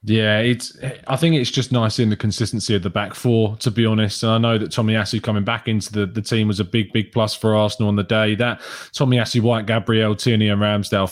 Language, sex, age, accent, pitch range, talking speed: English, male, 20-39, British, 100-120 Hz, 255 wpm